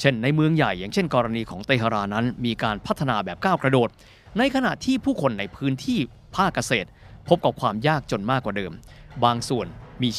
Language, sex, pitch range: Thai, male, 115-150 Hz